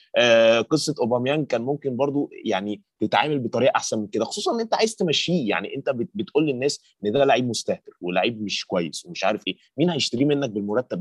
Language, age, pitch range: Arabic, 20-39, 115-145 Hz